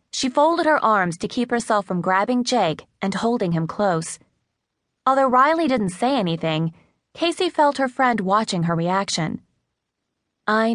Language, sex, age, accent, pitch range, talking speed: English, female, 20-39, American, 180-255 Hz, 150 wpm